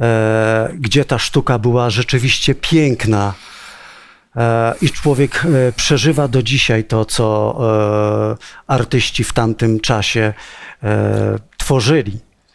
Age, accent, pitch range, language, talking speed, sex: 50-69, native, 120-180 Hz, Polish, 85 wpm, male